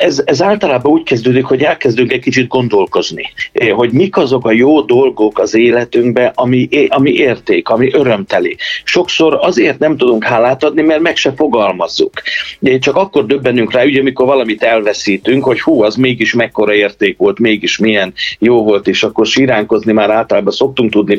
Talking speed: 160 wpm